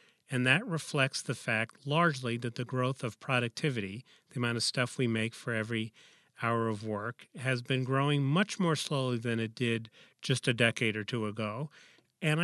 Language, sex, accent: English, male, American